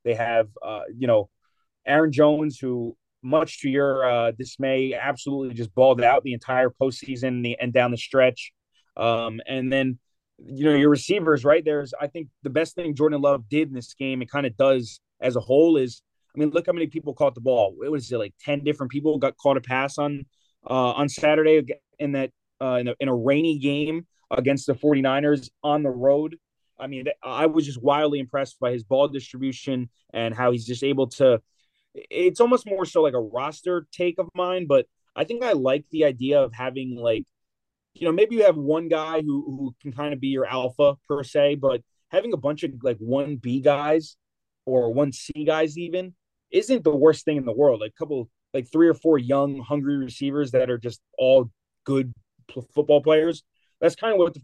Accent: American